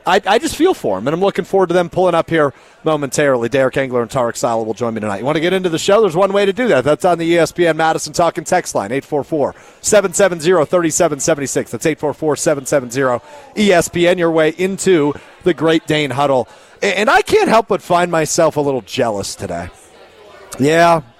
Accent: American